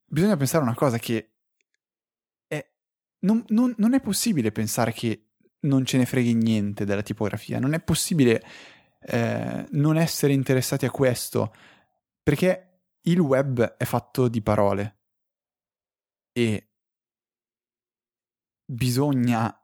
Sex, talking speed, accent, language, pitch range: male, 120 wpm, native, Italian, 115-135 Hz